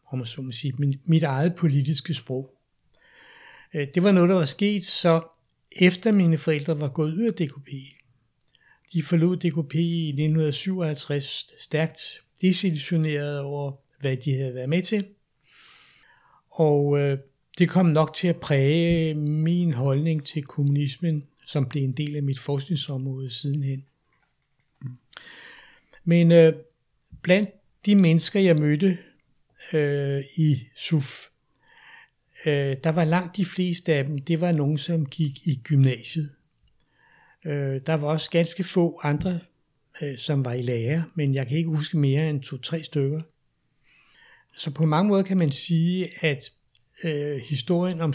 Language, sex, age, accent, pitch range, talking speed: Danish, male, 60-79, native, 140-170 Hz, 130 wpm